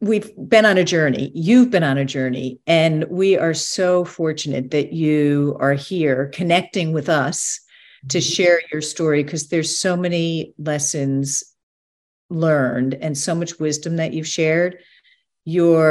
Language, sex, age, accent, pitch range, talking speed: English, female, 50-69, American, 150-185 Hz, 150 wpm